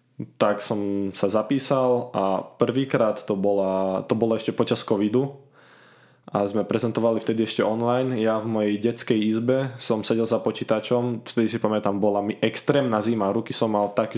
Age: 20-39